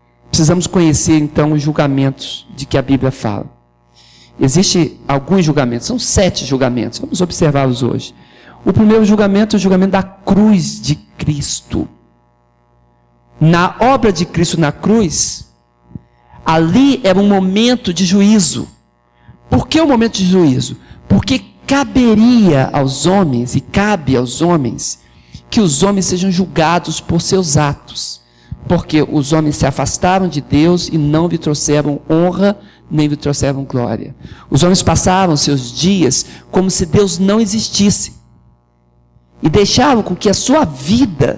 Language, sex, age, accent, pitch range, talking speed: Portuguese, male, 50-69, Brazilian, 130-195 Hz, 140 wpm